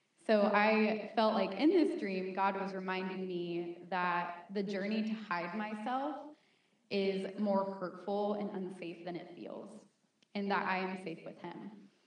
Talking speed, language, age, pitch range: 160 wpm, English, 20-39, 185-225 Hz